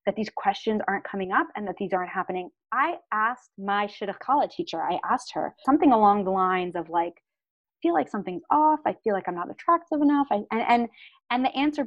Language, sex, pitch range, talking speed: English, female, 195-245 Hz, 230 wpm